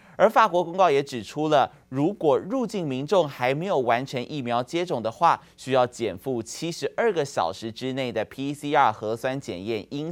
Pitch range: 115-155 Hz